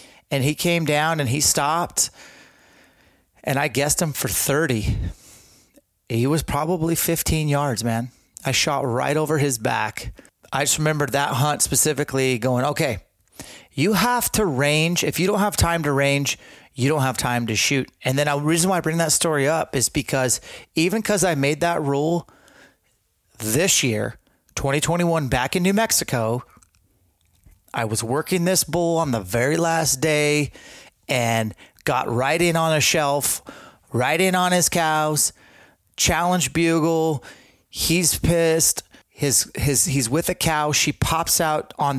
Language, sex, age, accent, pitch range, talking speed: English, male, 30-49, American, 125-165 Hz, 160 wpm